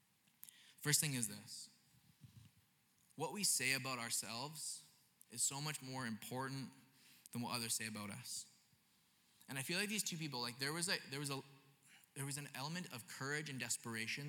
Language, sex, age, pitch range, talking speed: English, male, 20-39, 125-150 Hz, 175 wpm